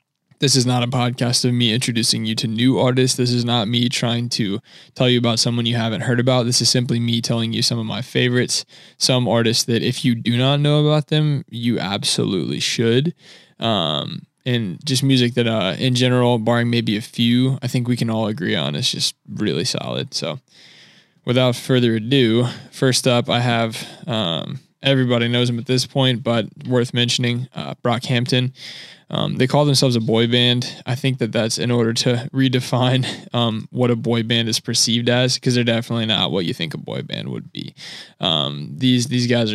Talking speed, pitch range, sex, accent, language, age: 200 wpm, 115-130 Hz, male, American, English, 20-39